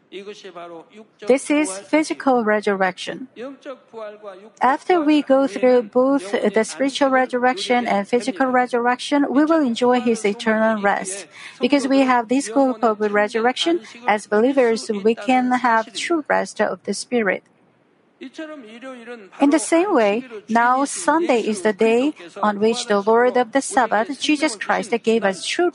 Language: Korean